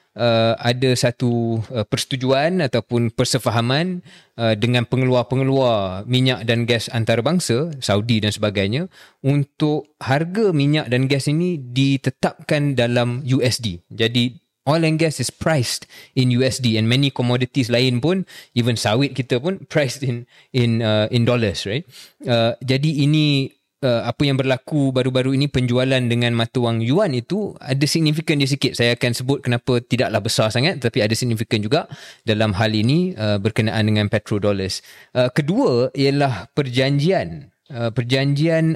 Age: 20-39